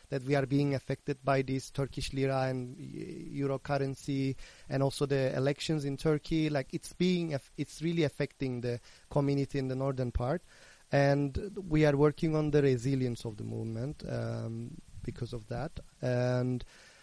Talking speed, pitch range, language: 160 wpm, 125-155 Hz, Greek